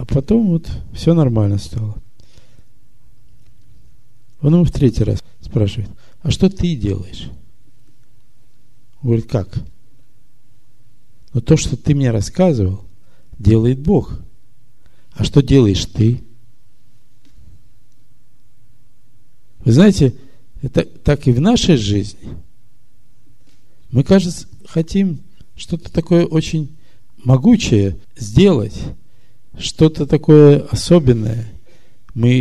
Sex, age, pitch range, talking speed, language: male, 50-69, 110-140 Hz, 95 wpm, Russian